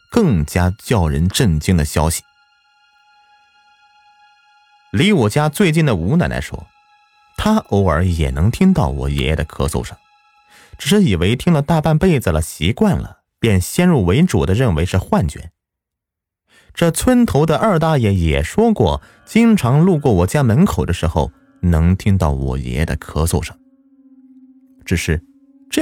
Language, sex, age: Chinese, male, 30-49